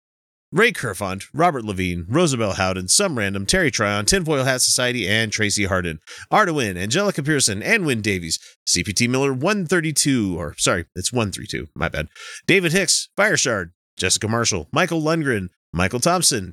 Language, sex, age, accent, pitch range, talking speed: English, male, 30-49, American, 95-140 Hz, 145 wpm